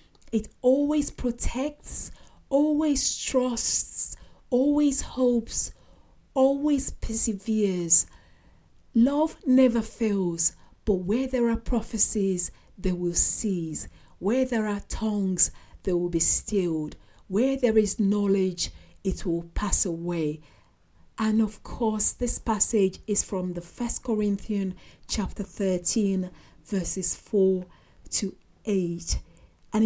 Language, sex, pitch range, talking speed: English, female, 190-235 Hz, 105 wpm